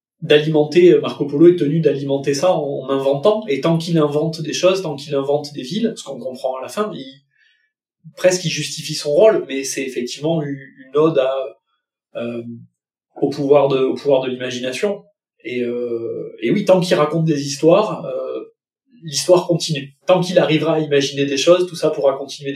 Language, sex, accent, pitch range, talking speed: French, male, French, 130-170 Hz, 175 wpm